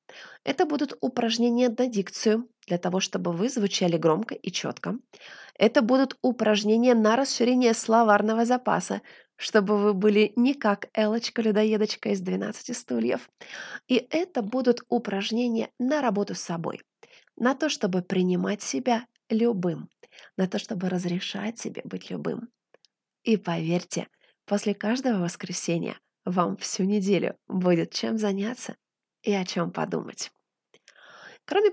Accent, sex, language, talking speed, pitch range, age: native, female, Russian, 125 wpm, 195-245 Hz, 20-39